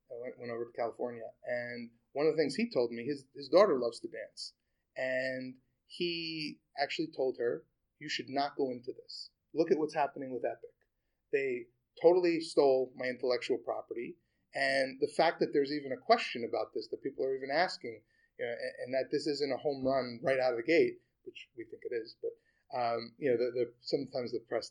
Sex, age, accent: male, 30-49, American